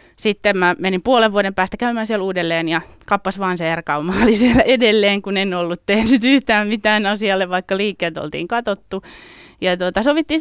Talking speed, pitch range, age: 175 wpm, 170-205 Hz, 20-39